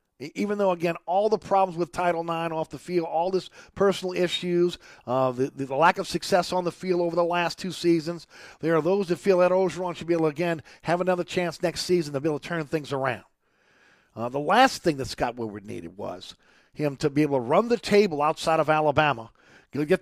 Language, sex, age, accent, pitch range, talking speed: English, male, 50-69, American, 140-175 Hz, 225 wpm